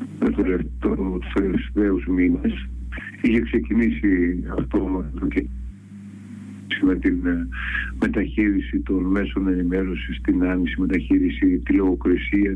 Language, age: Greek, 50-69